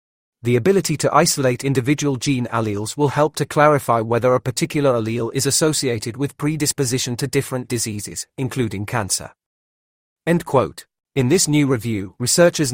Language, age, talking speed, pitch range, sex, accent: English, 40-59, 145 wpm, 120-150 Hz, male, British